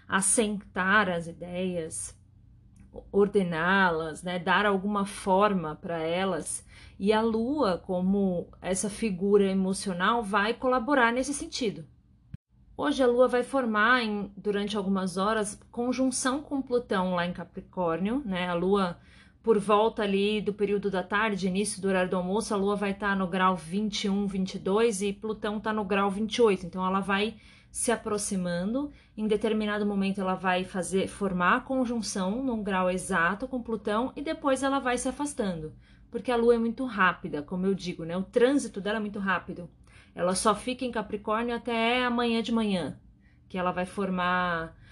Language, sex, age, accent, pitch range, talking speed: Portuguese, female, 30-49, Brazilian, 185-225 Hz, 155 wpm